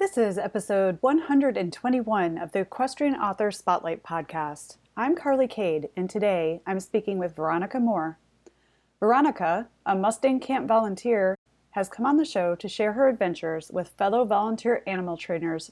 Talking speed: 150 wpm